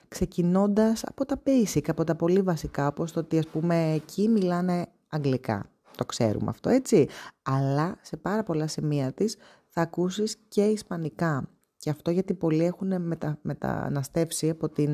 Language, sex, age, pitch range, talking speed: Greek, female, 20-39, 150-205 Hz, 155 wpm